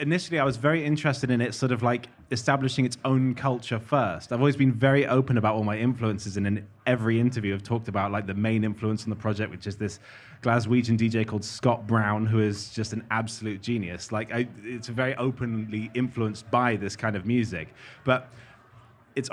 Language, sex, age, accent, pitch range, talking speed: English, male, 20-39, British, 110-130 Hz, 200 wpm